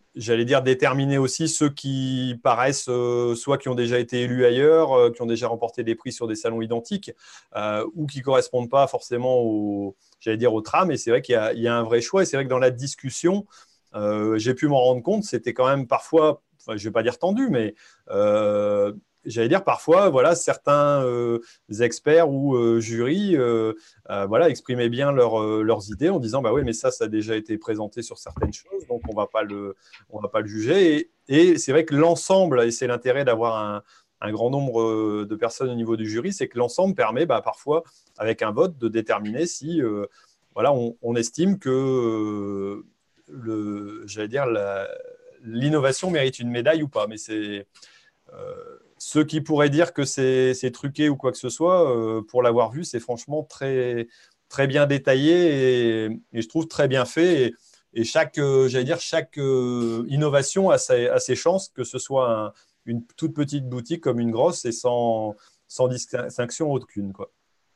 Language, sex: French, male